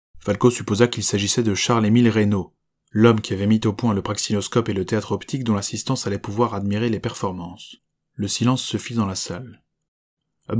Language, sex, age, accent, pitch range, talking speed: French, male, 20-39, French, 100-120 Hz, 195 wpm